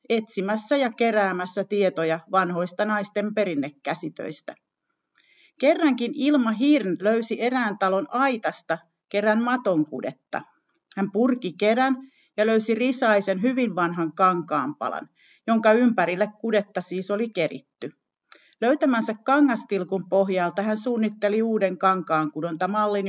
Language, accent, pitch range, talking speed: Finnish, native, 185-245 Hz, 100 wpm